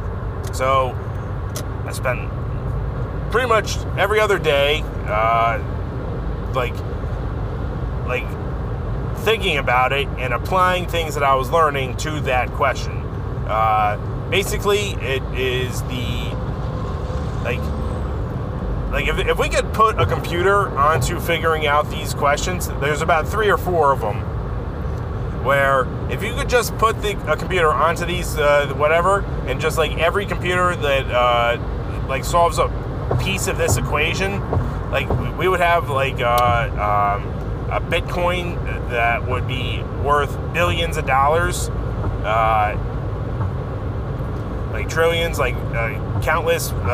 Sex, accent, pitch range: male, American, 105-135 Hz